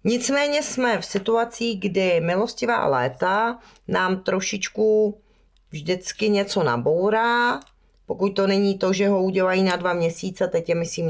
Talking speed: 135 wpm